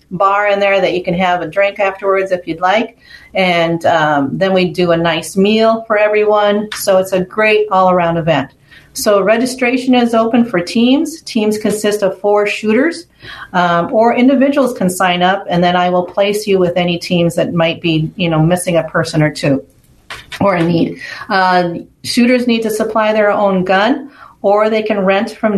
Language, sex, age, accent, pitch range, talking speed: English, female, 40-59, American, 180-220 Hz, 190 wpm